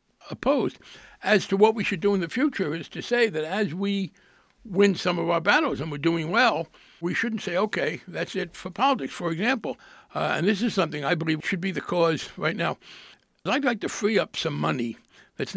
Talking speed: 215 wpm